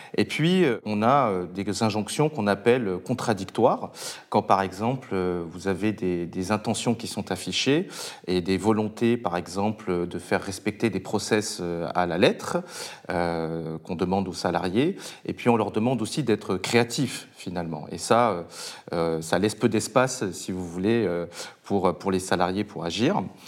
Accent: French